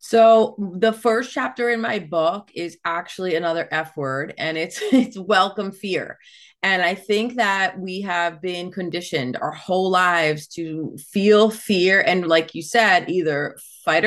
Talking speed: 160 wpm